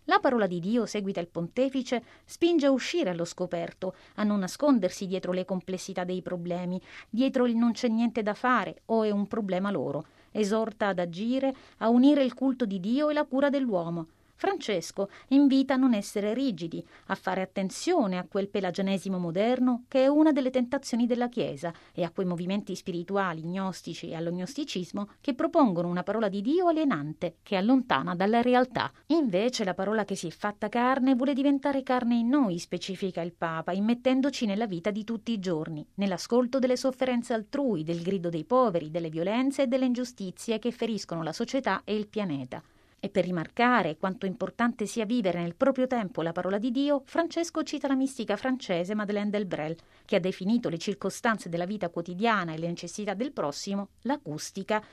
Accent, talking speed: native, 180 wpm